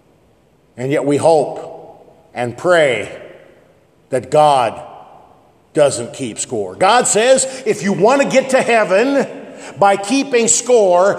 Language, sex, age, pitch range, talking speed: English, male, 50-69, 180-250 Hz, 125 wpm